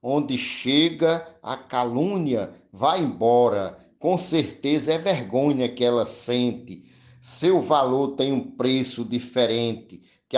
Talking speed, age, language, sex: 115 wpm, 50-69, Portuguese, male